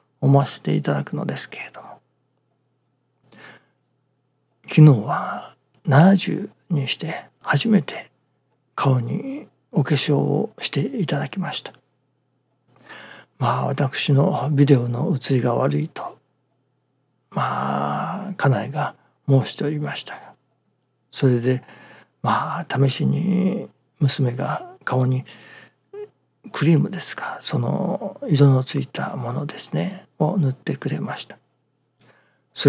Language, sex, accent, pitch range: Japanese, male, native, 130-160 Hz